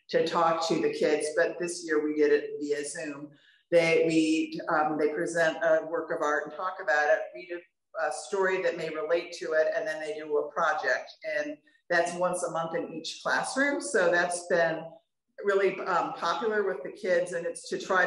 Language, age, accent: English, 50-69, American